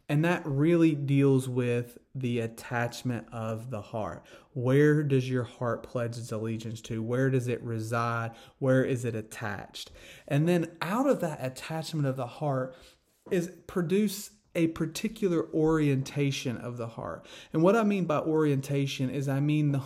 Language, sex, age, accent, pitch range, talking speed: English, male, 30-49, American, 125-160 Hz, 160 wpm